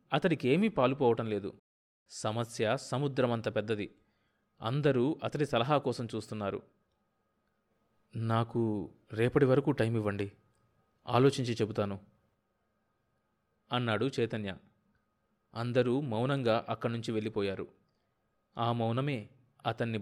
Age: 30-49